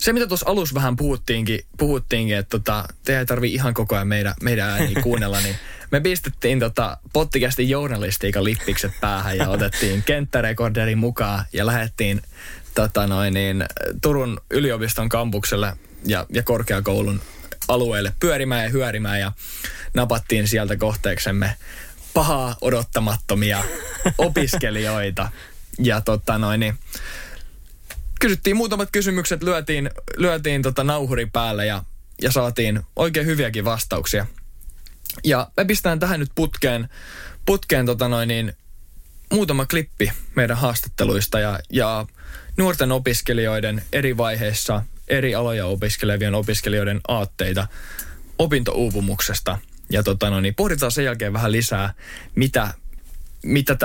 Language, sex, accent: Finnish, male, native